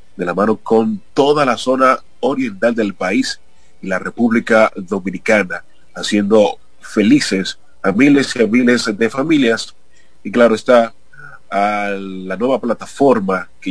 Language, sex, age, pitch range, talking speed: Spanish, male, 30-49, 105-130 Hz, 135 wpm